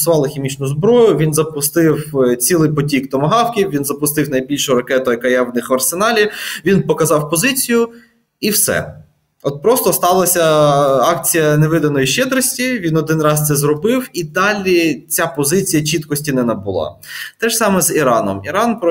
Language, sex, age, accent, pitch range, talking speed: Ukrainian, male, 20-39, native, 140-185 Hz, 150 wpm